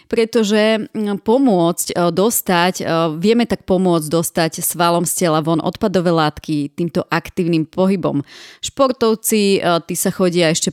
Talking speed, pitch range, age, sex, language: 120 wpm, 160-190 Hz, 30-49, female, Slovak